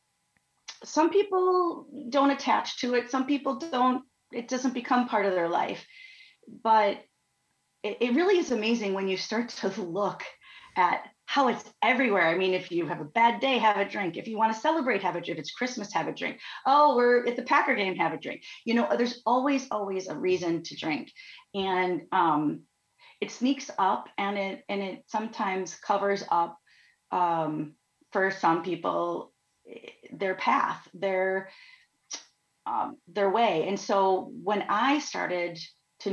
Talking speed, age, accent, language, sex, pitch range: 170 wpm, 30-49, American, English, female, 185-265 Hz